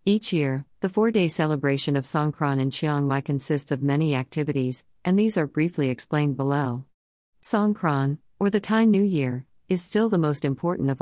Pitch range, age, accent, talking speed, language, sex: 135-165 Hz, 40-59, American, 175 wpm, English, female